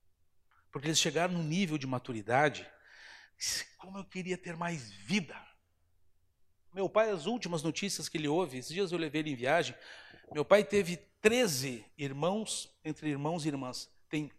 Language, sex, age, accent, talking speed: Portuguese, male, 60-79, Brazilian, 160 wpm